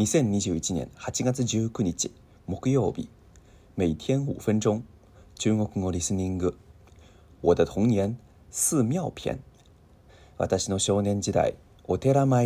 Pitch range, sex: 90-110 Hz, male